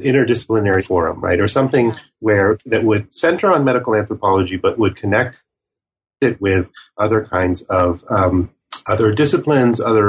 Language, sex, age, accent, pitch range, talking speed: English, male, 30-49, American, 95-110 Hz, 145 wpm